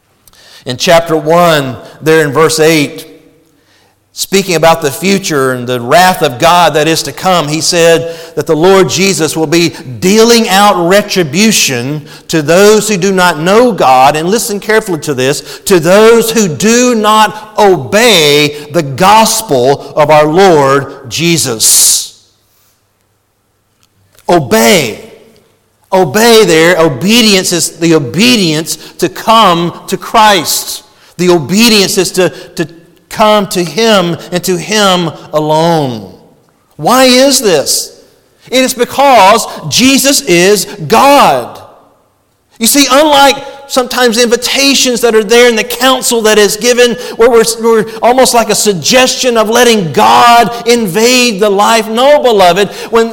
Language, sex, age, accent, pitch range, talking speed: English, male, 50-69, American, 165-240 Hz, 130 wpm